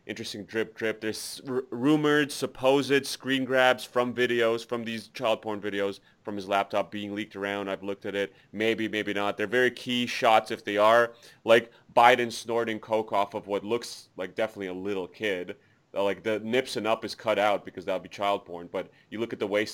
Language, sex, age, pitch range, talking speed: English, male, 30-49, 105-125 Hz, 210 wpm